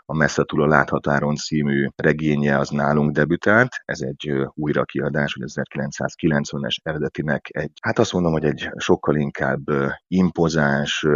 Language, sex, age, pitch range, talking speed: Hungarian, male, 30-49, 70-75 Hz, 130 wpm